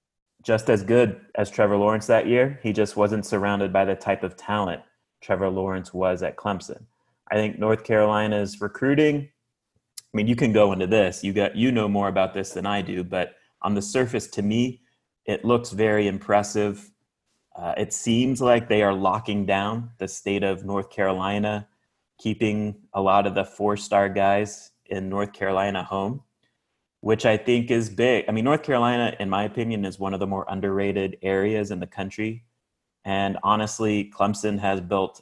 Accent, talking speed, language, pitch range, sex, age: American, 180 wpm, English, 95-110 Hz, male, 30-49